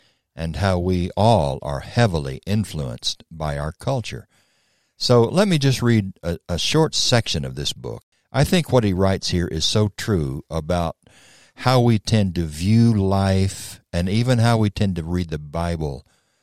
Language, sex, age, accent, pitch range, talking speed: English, male, 60-79, American, 90-120 Hz, 170 wpm